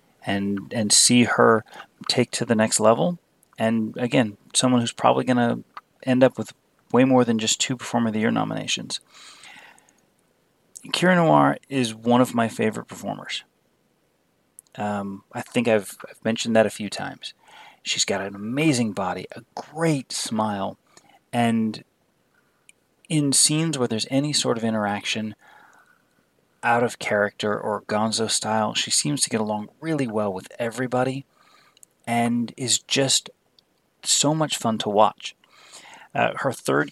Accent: American